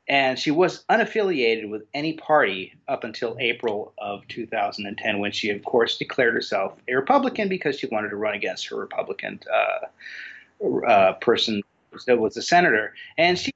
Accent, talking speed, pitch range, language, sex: American, 165 wpm, 110-185 Hz, English, male